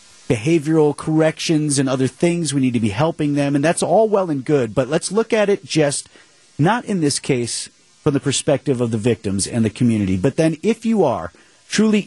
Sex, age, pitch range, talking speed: male, 30-49, 115-160 Hz, 210 wpm